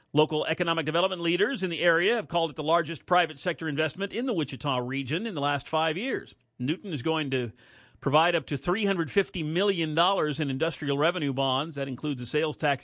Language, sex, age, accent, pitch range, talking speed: English, male, 40-59, American, 130-170 Hz, 195 wpm